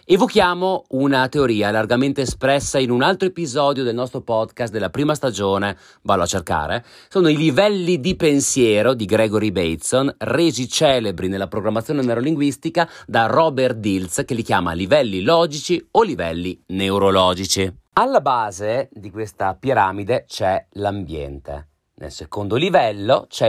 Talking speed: 135 wpm